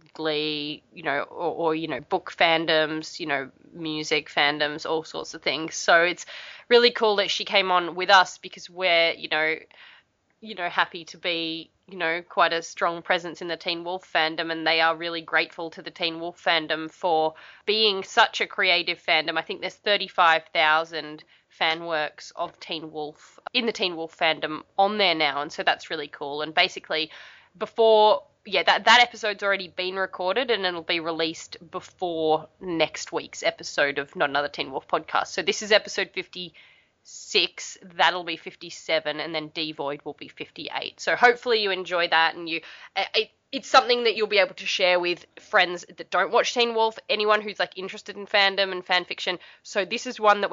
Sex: female